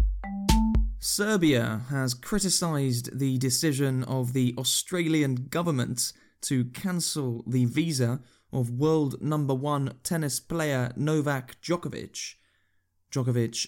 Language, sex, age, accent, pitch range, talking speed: English, male, 20-39, British, 120-145 Hz, 95 wpm